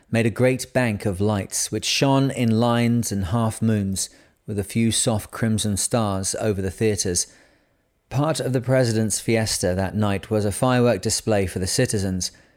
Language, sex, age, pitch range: English, male, 40-59, 100-115 Hz